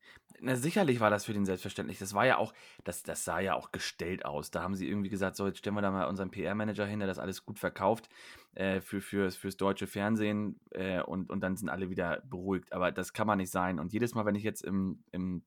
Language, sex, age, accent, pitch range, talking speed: German, male, 20-39, German, 95-120 Hz, 255 wpm